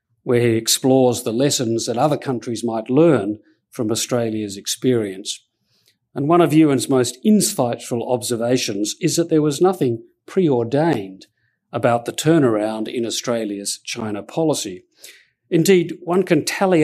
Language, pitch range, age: English, 115-150 Hz, 50-69